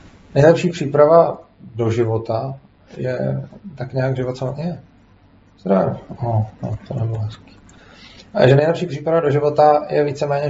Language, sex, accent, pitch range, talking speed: Czech, male, native, 110-135 Hz, 130 wpm